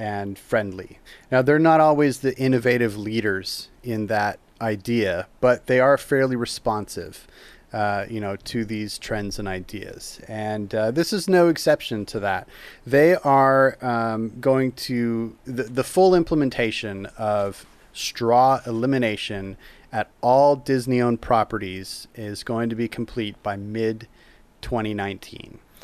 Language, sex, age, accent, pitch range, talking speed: English, male, 30-49, American, 110-135 Hz, 135 wpm